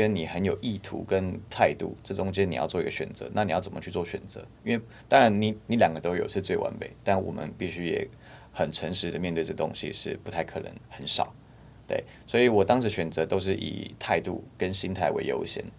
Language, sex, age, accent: Chinese, male, 20-39, native